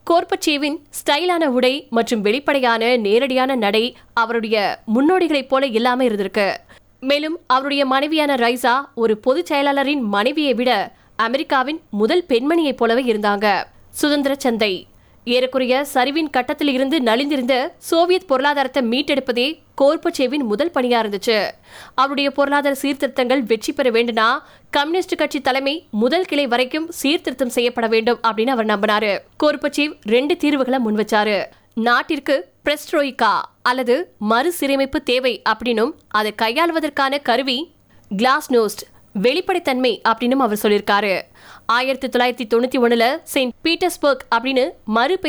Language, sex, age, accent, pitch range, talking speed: Tamil, female, 20-39, native, 235-290 Hz, 95 wpm